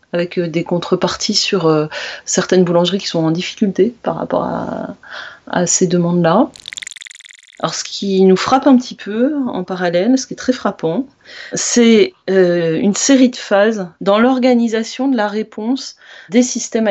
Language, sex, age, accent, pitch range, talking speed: French, female, 30-49, French, 175-230 Hz, 155 wpm